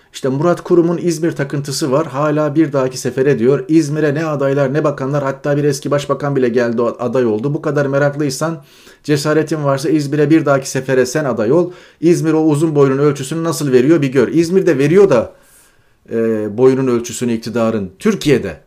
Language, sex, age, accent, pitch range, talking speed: Turkish, male, 40-59, native, 130-170 Hz, 170 wpm